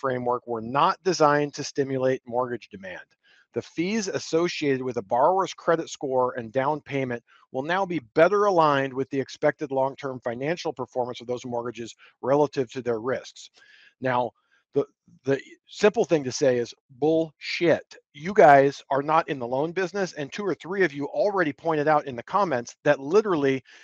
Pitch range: 130-165 Hz